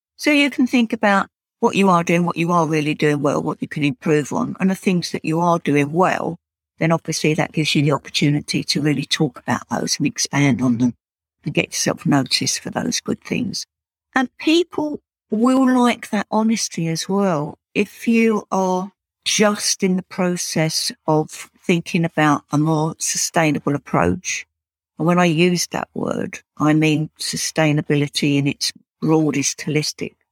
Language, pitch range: English, 150-200 Hz